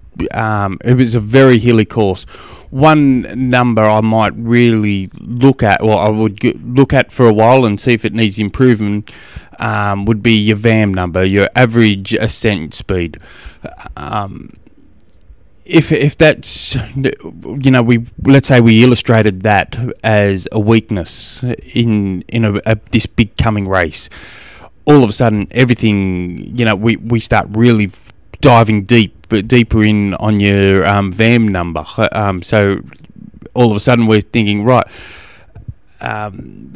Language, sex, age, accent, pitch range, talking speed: English, male, 20-39, Australian, 100-120 Hz, 150 wpm